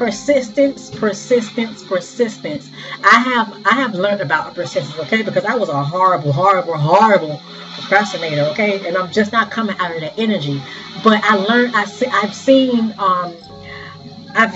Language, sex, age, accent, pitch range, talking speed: English, female, 30-49, American, 185-225 Hz, 140 wpm